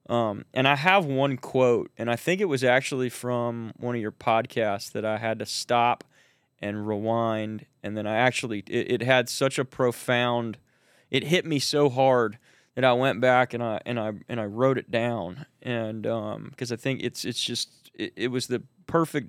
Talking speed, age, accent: 200 wpm, 20-39, American